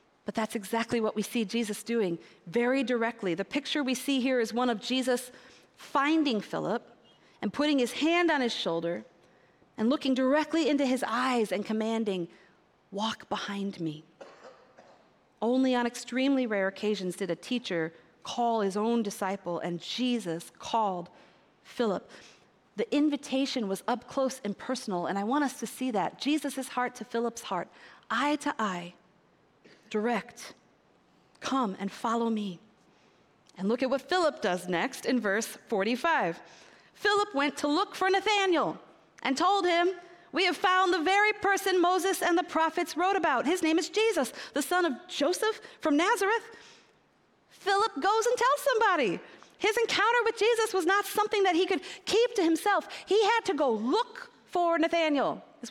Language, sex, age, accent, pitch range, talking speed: English, female, 40-59, American, 220-355 Hz, 160 wpm